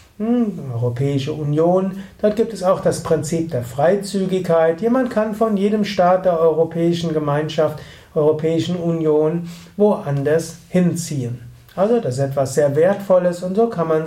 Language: German